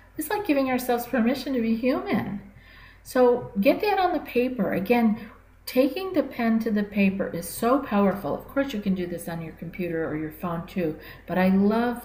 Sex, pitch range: female, 170-210 Hz